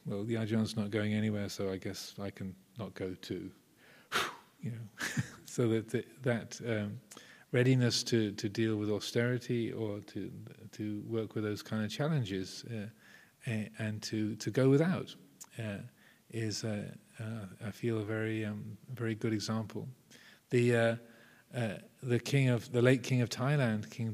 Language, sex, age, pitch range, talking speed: English, male, 40-59, 105-125 Hz, 165 wpm